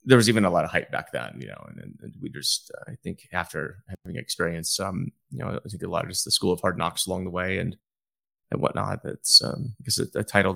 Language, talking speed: English, 260 wpm